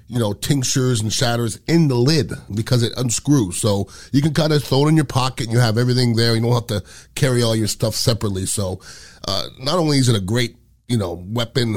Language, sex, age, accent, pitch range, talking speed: English, male, 30-49, American, 110-135 Hz, 235 wpm